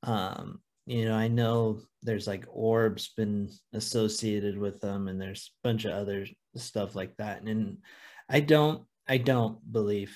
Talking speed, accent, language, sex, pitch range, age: 165 wpm, American, English, male, 105-130 Hz, 30-49